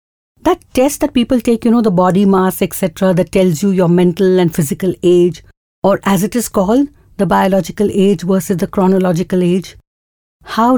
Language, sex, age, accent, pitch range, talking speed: English, female, 60-79, Indian, 170-230 Hz, 180 wpm